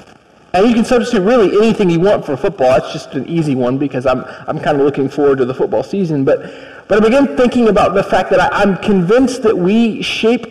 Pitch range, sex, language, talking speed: 155-210 Hz, male, English, 235 wpm